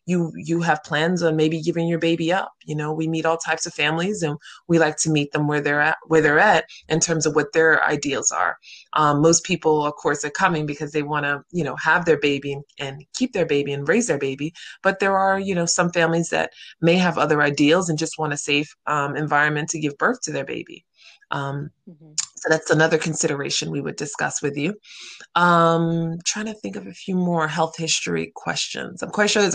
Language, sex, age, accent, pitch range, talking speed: English, female, 20-39, American, 150-170 Hz, 225 wpm